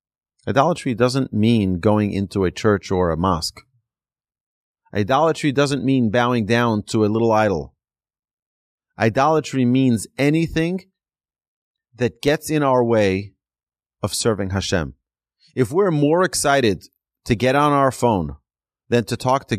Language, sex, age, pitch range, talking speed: English, male, 30-49, 95-135 Hz, 130 wpm